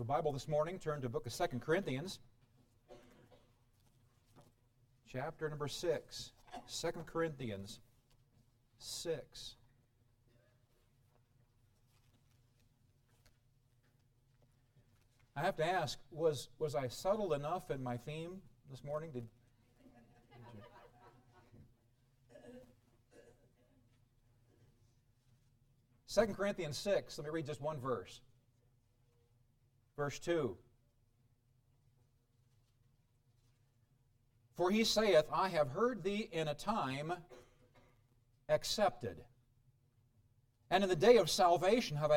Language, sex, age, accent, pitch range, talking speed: English, male, 40-59, American, 120-140 Hz, 85 wpm